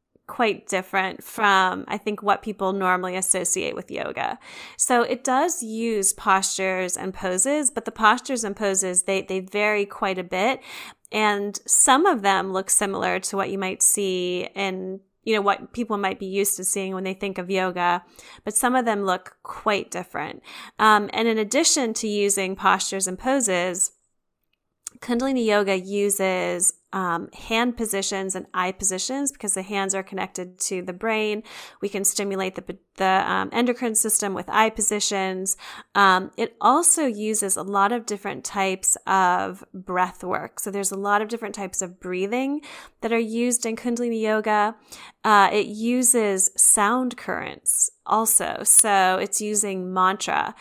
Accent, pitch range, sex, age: American, 190-225 Hz, female, 10-29